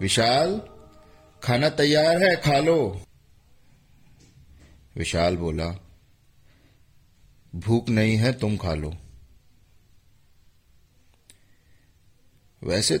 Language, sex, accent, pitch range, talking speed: Hindi, male, native, 90-120 Hz, 70 wpm